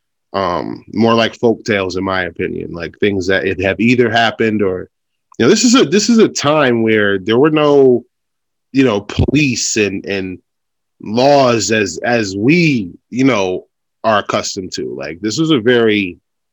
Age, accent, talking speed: 20-39, American, 165 wpm